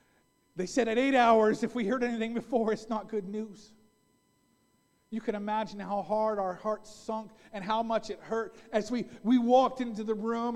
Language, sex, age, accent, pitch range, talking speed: English, male, 40-59, American, 215-300 Hz, 195 wpm